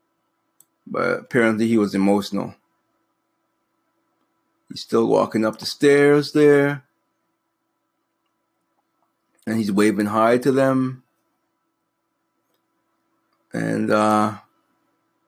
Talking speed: 75 wpm